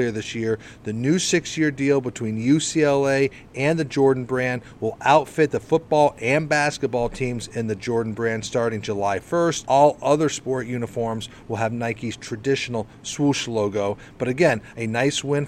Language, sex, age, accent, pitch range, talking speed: English, male, 40-59, American, 115-140 Hz, 160 wpm